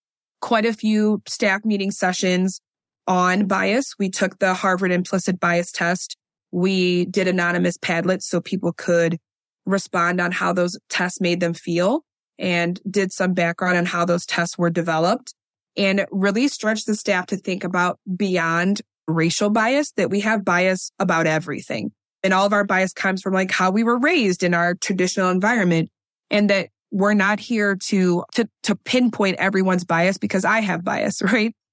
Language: English